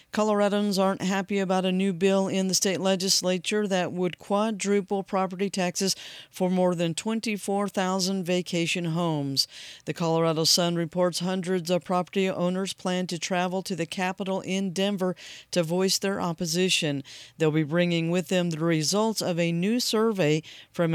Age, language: 40-59, English